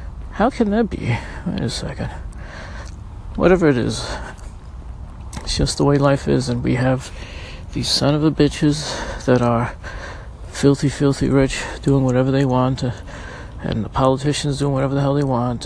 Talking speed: 150 wpm